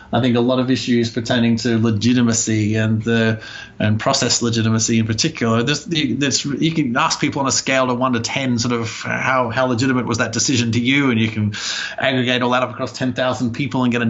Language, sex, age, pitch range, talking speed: English, male, 30-49, 115-130 Hz, 230 wpm